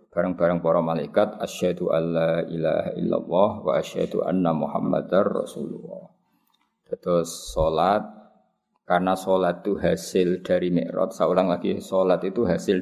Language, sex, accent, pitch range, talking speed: Indonesian, male, native, 90-115 Hz, 120 wpm